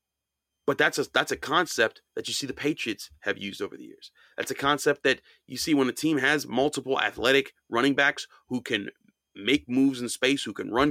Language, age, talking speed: English, 30-49, 215 wpm